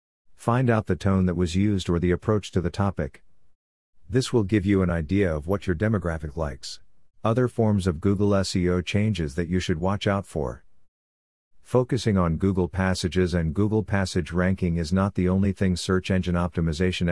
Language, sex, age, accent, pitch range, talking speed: English, male, 50-69, American, 85-100 Hz, 180 wpm